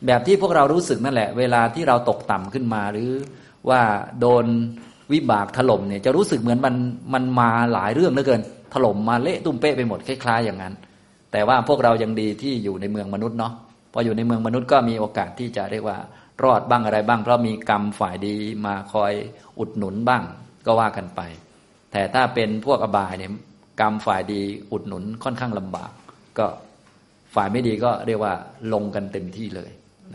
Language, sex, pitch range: Thai, male, 100-125 Hz